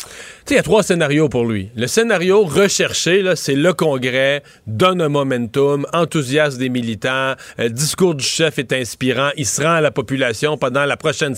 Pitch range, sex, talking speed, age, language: 135-175 Hz, male, 185 wpm, 40-59, French